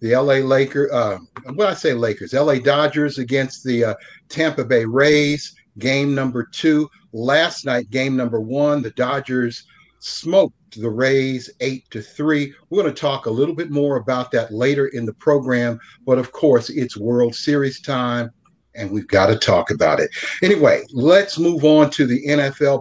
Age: 50-69